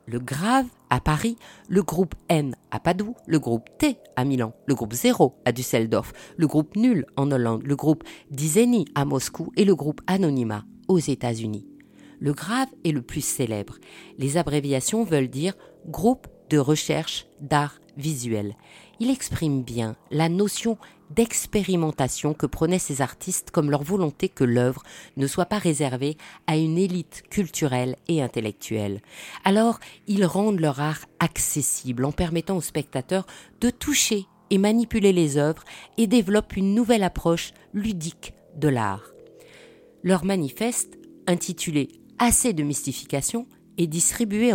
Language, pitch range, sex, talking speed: French, 140-200 Hz, female, 170 wpm